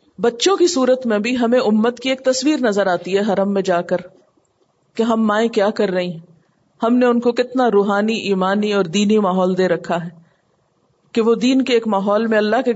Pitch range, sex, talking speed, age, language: 190-255 Hz, female, 215 wpm, 50-69, Urdu